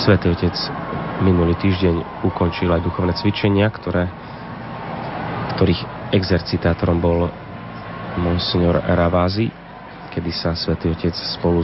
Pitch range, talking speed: 85-100 Hz, 100 wpm